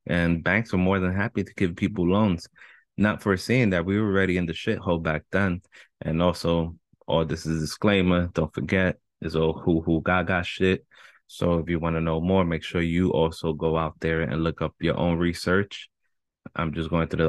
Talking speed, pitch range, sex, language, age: 210 wpm, 85-100 Hz, male, English, 20-39